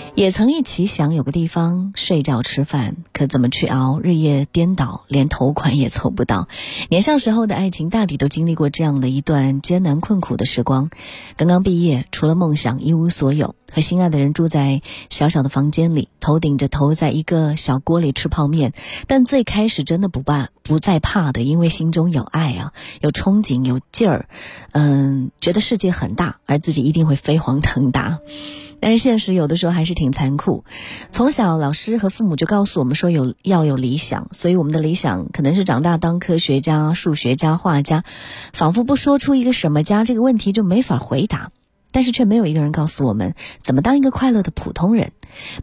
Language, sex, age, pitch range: Chinese, female, 30-49, 145-200 Hz